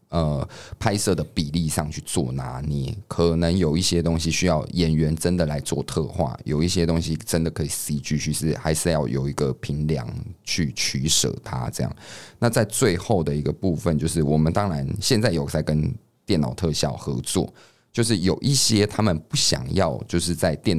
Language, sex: Chinese, male